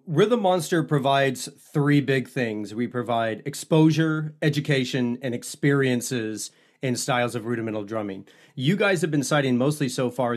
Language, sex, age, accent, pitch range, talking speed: English, male, 30-49, American, 125-150 Hz, 145 wpm